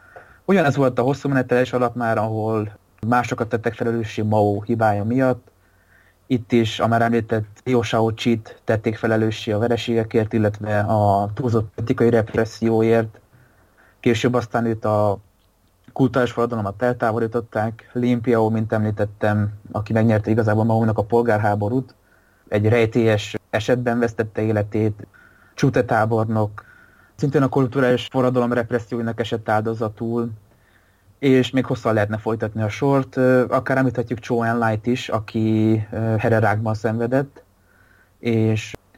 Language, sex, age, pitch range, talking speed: Hungarian, male, 20-39, 105-120 Hz, 120 wpm